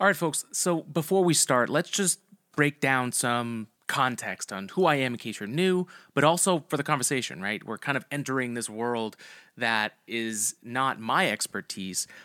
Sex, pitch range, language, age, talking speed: male, 110-140 Hz, English, 30-49, 185 wpm